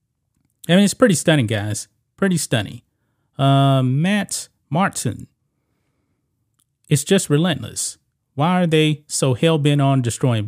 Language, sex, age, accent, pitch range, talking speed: English, male, 30-49, American, 120-150 Hz, 125 wpm